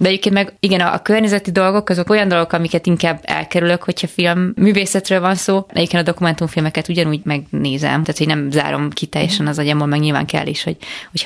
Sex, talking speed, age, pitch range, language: female, 195 wpm, 20-39, 150-175 Hz, Hungarian